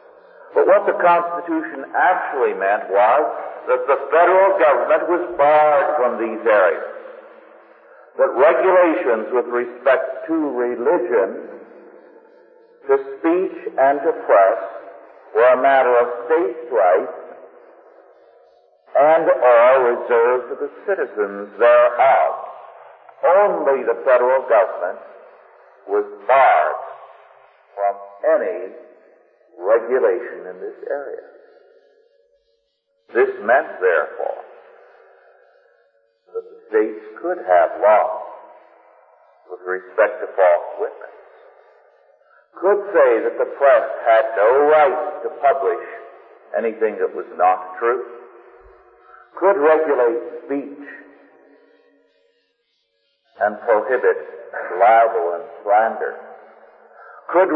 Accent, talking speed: American, 95 wpm